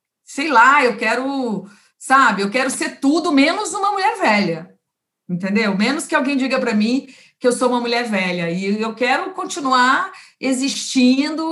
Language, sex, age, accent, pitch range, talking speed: Portuguese, female, 40-59, Brazilian, 210-270 Hz, 160 wpm